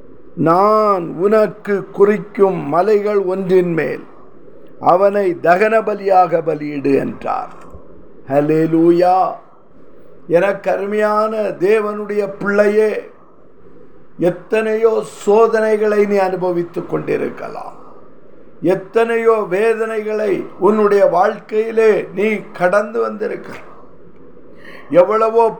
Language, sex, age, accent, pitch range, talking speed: Tamil, male, 50-69, native, 195-230 Hz, 70 wpm